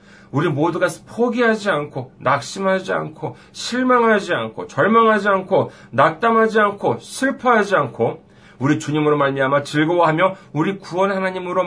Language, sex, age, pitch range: Korean, male, 40-59, 100-160 Hz